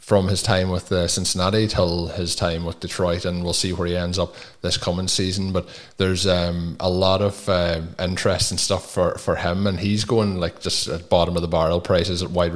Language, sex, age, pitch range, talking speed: English, male, 20-39, 85-95 Hz, 225 wpm